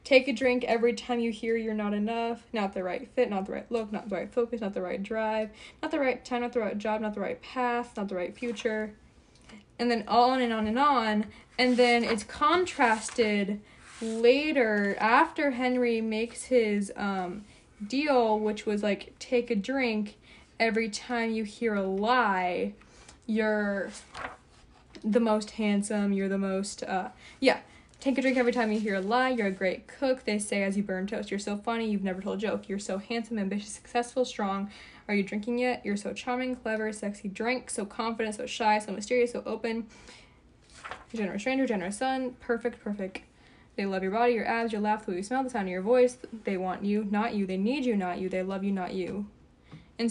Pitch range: 205-240 Hz